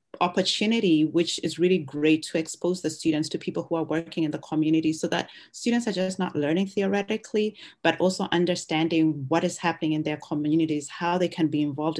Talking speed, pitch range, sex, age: 195 wpm, 150-175 Hz, female, 30-49